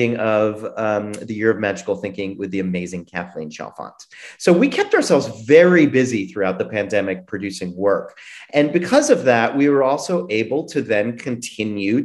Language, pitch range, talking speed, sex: English, 110-170 Hz, 170 wpm, male